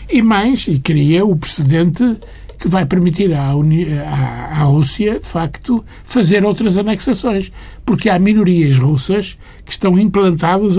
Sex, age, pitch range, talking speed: male, 60-79, 140-200 Hz, 140 wpm